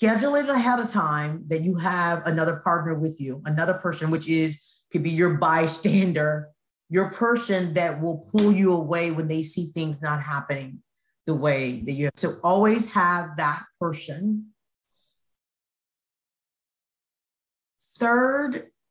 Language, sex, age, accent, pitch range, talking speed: English, female, 30-49, American, 155-205 Hz, 140 wpm